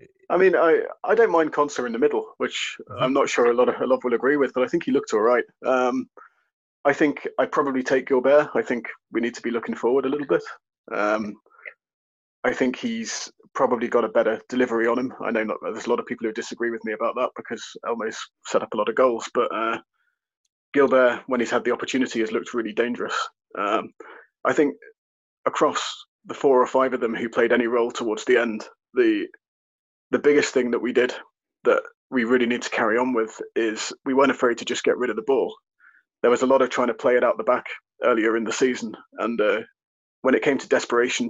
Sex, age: male, 20-39